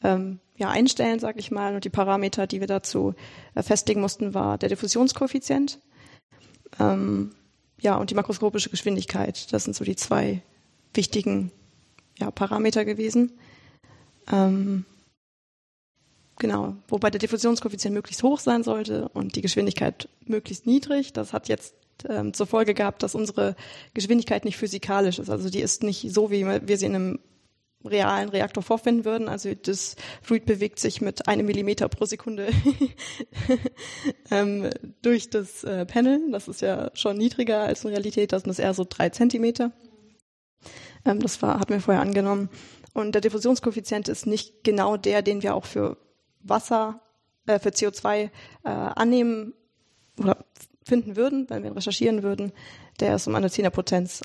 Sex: female